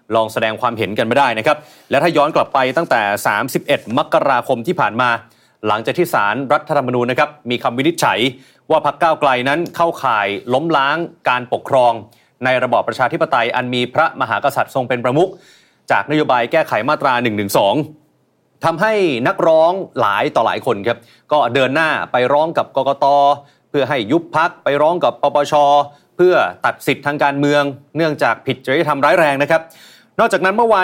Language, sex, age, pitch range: Thai, male, 30-49, 125-155 Hz